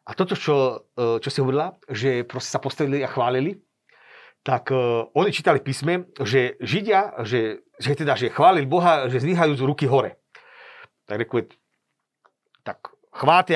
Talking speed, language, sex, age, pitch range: 140 wpm, Slovak, male, 40-59, 145-220 Hz